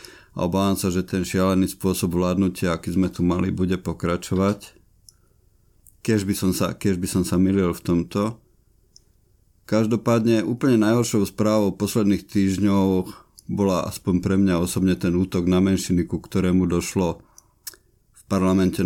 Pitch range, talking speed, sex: 90-100 Hz, 130 wpm, male